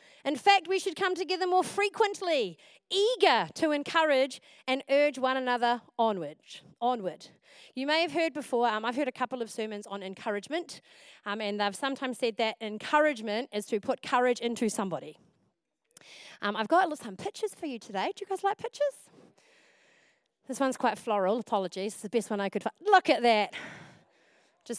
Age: 30-49